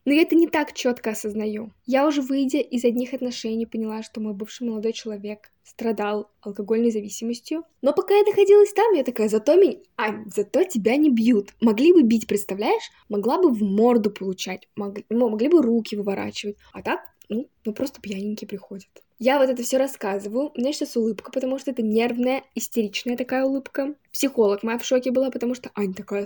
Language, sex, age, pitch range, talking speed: Russian, female, 10-29, 215-275 Hz, 185 wpm